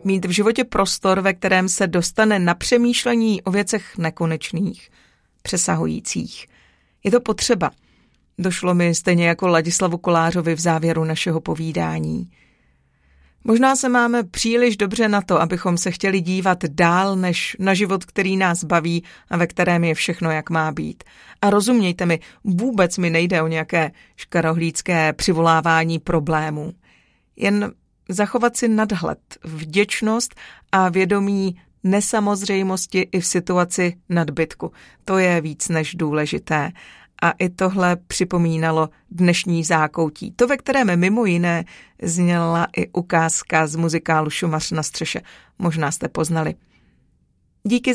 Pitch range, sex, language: 165-200 Hz, female, Czech